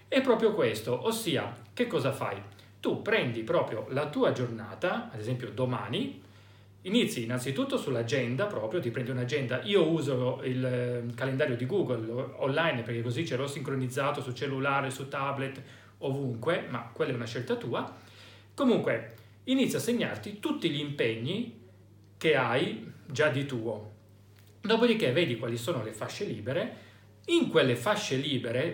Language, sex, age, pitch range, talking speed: Italian, male, 40-59, 120-175 Hz, 145 wpm